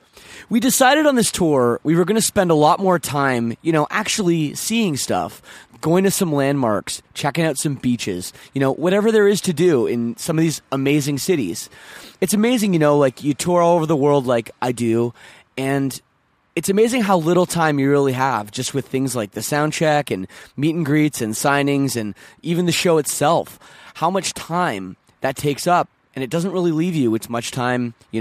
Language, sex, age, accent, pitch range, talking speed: English, male, 20-39, American, 120-170 Hz, 205 wpm